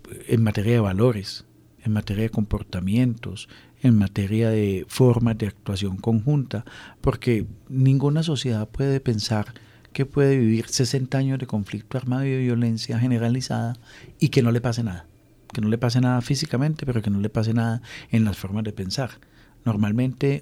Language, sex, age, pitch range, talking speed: Spanish, male, 50-69, 105-125 Hz, 160 wpm